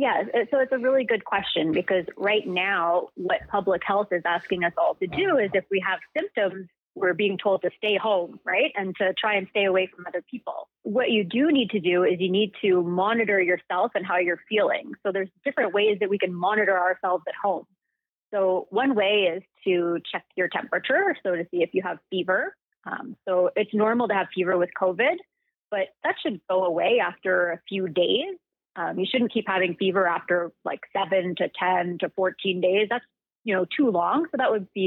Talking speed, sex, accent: 210 wpm, female, American